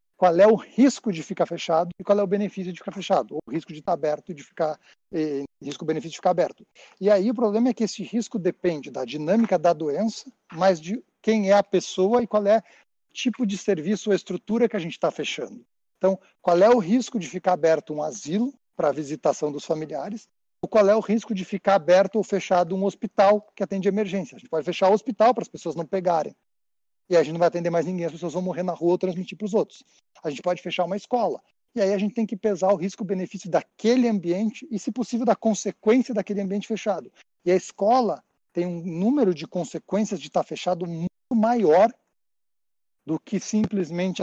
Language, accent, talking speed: Portuguese, Brazilian, 220 wpm